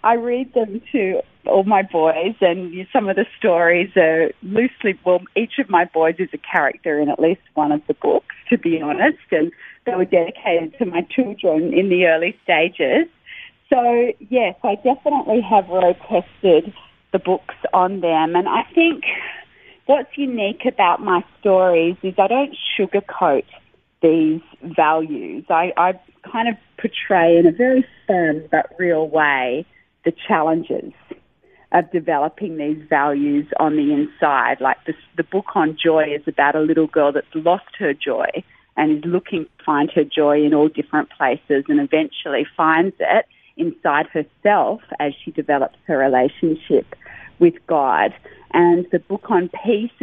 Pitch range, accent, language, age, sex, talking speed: 160-215 Hz, Australian, English, 30-49, female, 160 wpm